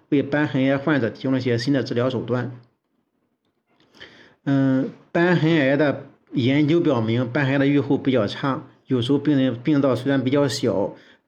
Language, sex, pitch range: Chinese, male, 120-145 Hz